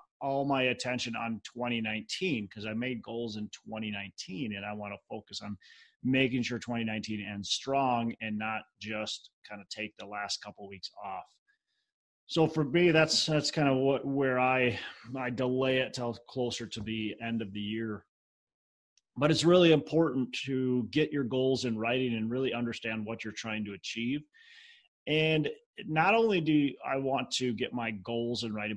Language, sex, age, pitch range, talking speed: English, male, 30-49, 110-135 Hz, 175 wpm